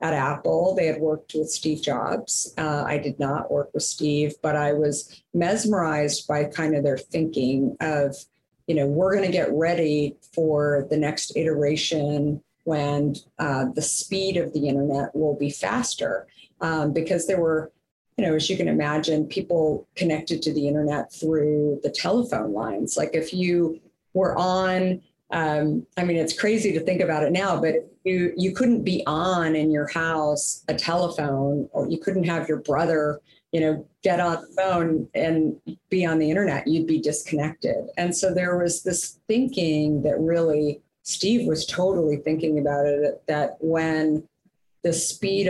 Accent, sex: American, female